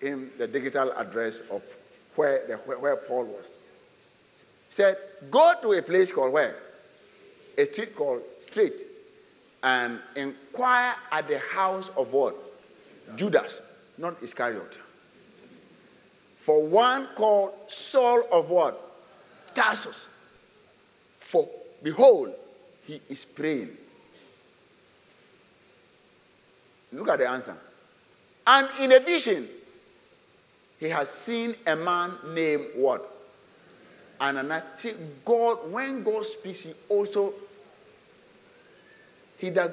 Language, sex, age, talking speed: English, male, 50-69, 100 wpm